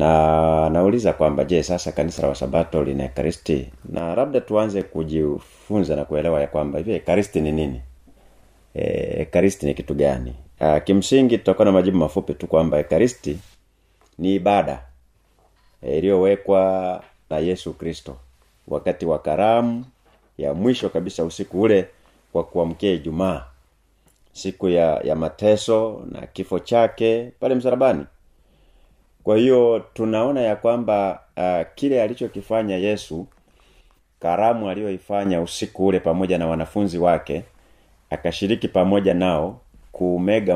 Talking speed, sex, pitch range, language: 125 wpm, male, 80-100 Hz, Swahili